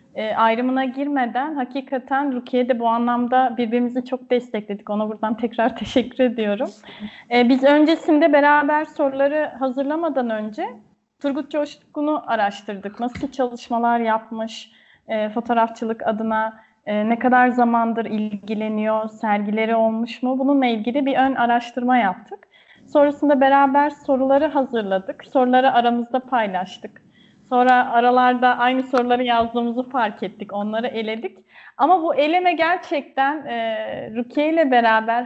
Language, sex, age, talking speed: Turkish, female, 30-49, 115 wpm